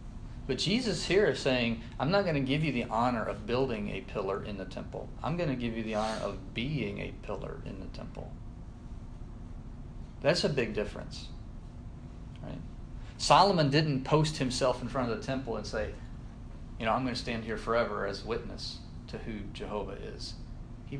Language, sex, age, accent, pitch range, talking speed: English, male, 40-59, American, 110-130 Hz, 185 wpm